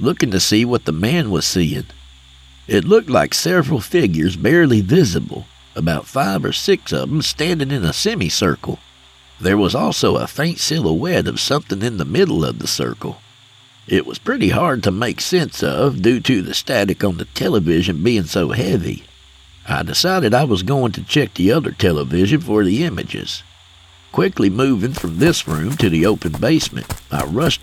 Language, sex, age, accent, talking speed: English, male, 60-79, American, 175 wpm